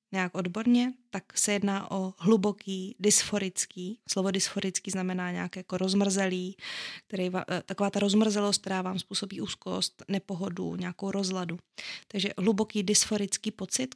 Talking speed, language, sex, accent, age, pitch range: 130 wpm, Czech, female, native, 20-39, 180-205 Hz